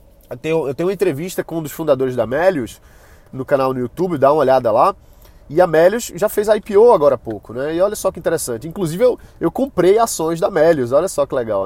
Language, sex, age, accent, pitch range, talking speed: Portuguese, male, 20-39, Brazilian, 130-180 Hz, 235 wpm